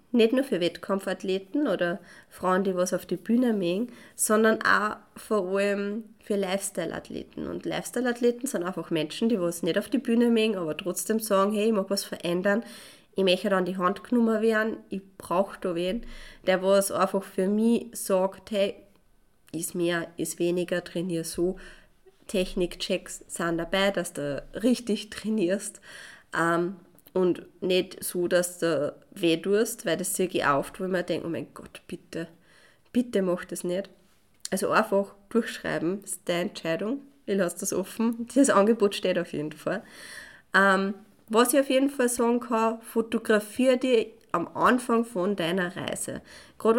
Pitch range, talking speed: 180-225 Hz, 160 wpm